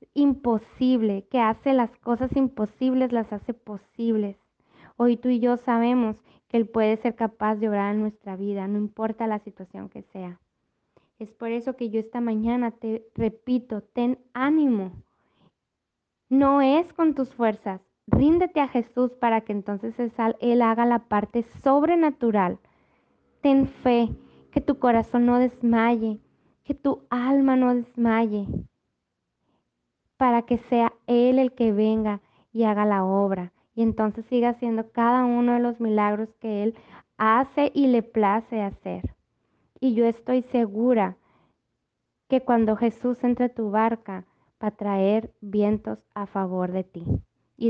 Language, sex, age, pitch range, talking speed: Spanish, female, 20-39, 210-245 Hz, 145 wpm